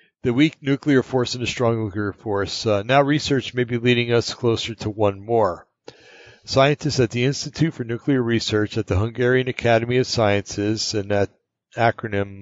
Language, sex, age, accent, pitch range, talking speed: English, male, 60-79, American, 110-130 Hz, 175 wpm